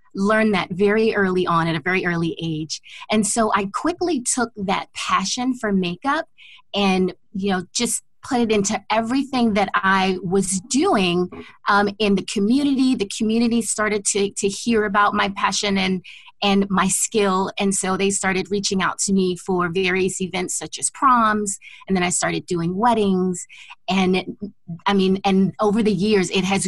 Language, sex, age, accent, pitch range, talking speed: English, female, 30-49, American, 180-210 Hz, 175 wpm